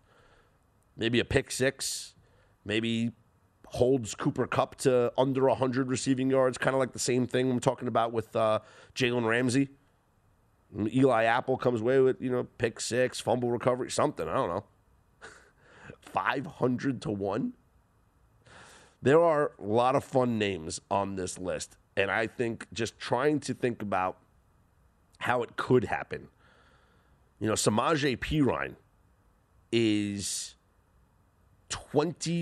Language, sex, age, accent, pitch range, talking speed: English, male, 30-49, American, 100-130 Hz, 135 wpm